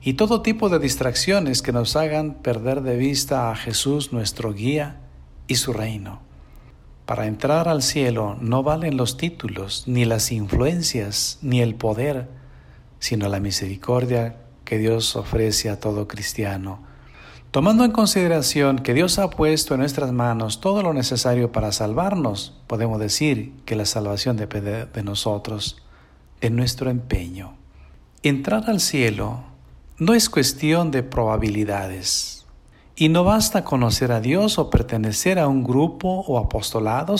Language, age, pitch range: Spanish, 50-69, 105-150 Hz